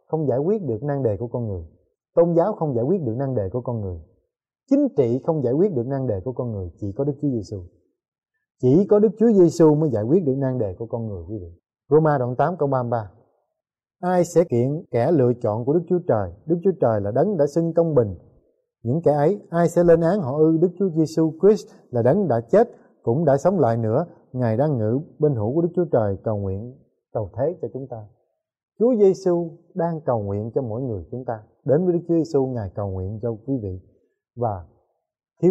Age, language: 20-39, Vietnamese